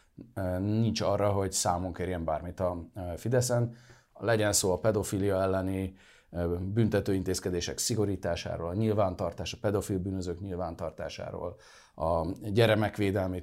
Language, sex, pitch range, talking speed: English, male, 90-115 Hz, 105 wpm